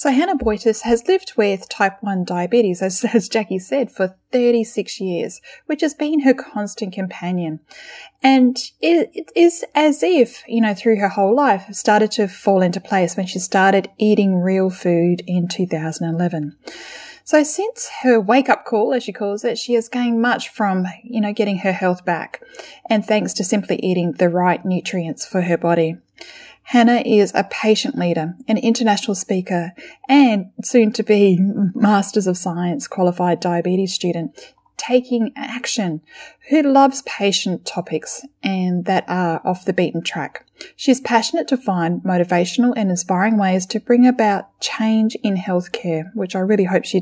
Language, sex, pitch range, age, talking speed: English, female, 180-240 Hz, 10-29, 165 wpm